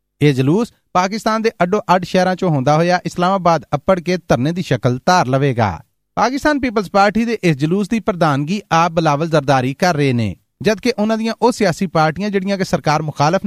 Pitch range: 155-210 Hz